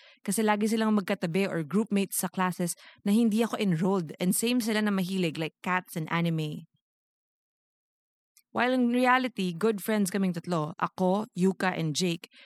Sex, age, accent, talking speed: female, 20-39, Filipino, 155 wpm